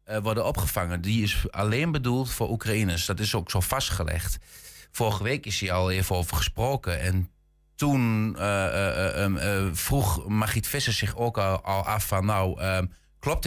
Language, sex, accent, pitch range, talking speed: Dutch, male, Dutch, 95-130 Hz, 175 wpm